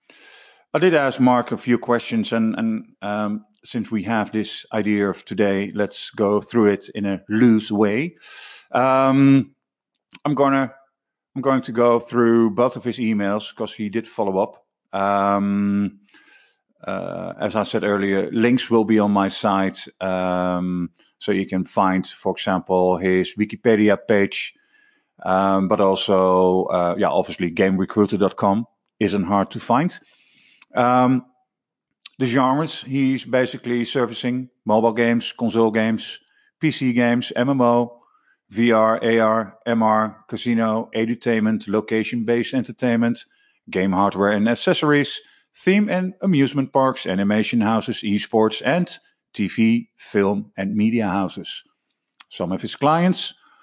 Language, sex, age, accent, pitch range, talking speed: English, male, 50-69, Dutch, 100-130 Hz, 130 wpm